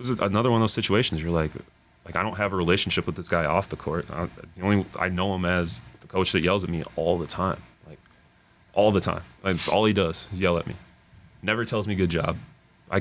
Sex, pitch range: male, 80-95 Hz